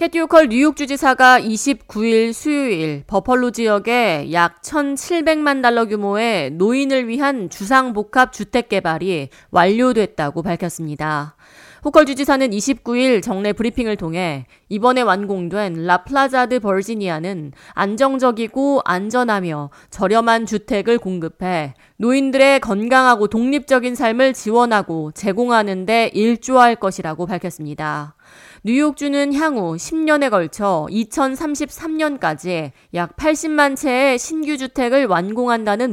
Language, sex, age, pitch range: Korean, female, 30-49, 185-265 Hz